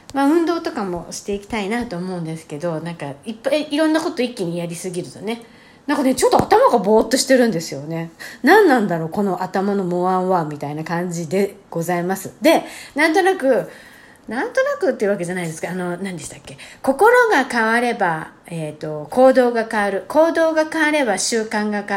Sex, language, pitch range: female, Japanese, 175-270 Hz